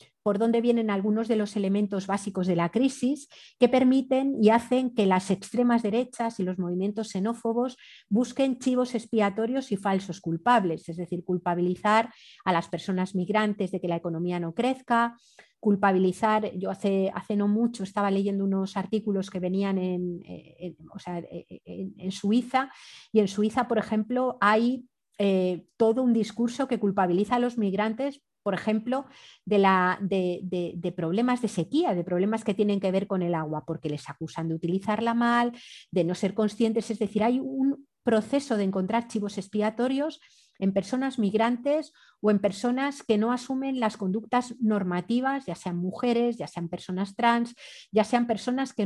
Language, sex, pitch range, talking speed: Spanish, female, 190-240 Hz, 160 wpm